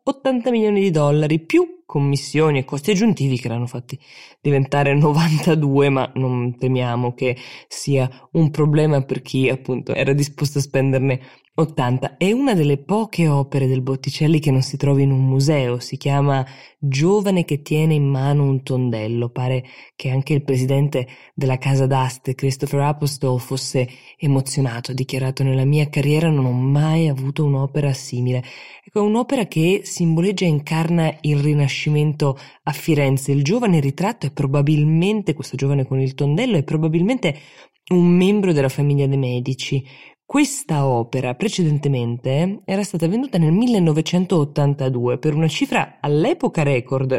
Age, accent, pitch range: 20-39, native, 130-160 Hz